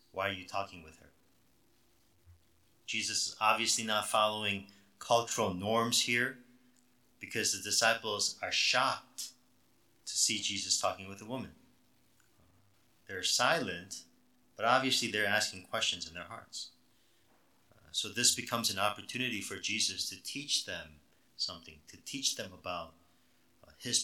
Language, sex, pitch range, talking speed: English, male, 90-110 Hz, 130 wpm